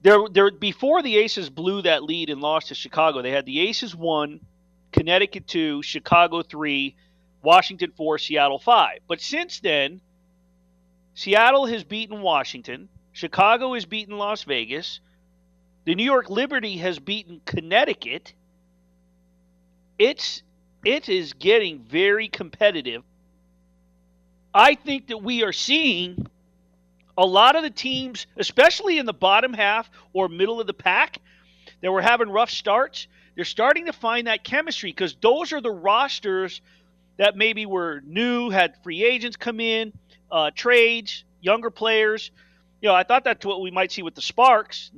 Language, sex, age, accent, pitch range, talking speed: English, male, 40-59, American, 140-225 Hz, 150 wpm